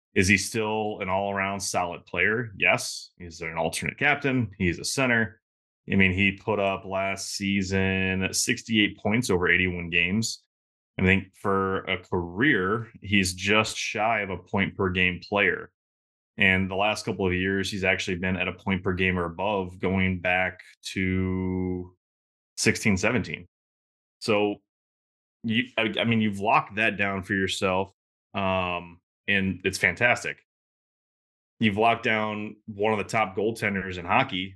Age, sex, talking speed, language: 20-39, male, 140 wpm, English